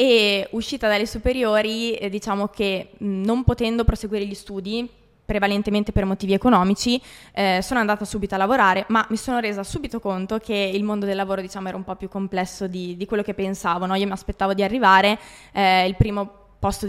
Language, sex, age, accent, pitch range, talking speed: Italian, female, 20-39, native, 195-225 Hz, 180 wpm